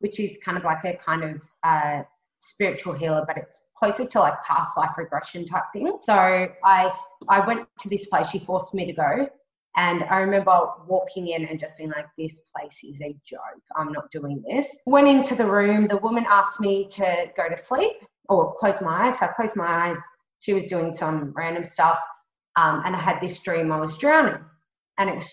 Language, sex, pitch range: English, female, 165-200 Hz